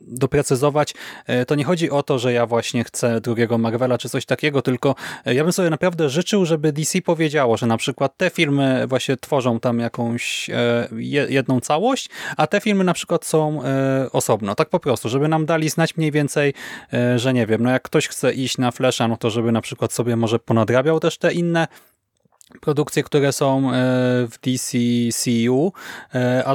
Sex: male